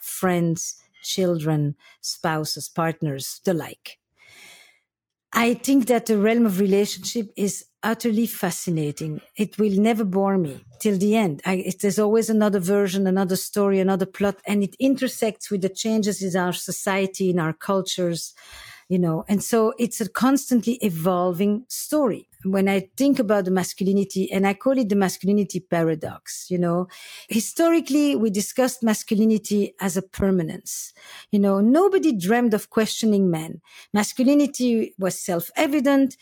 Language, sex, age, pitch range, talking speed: English, female, 50-69, 190-255 Hz, 140 wpm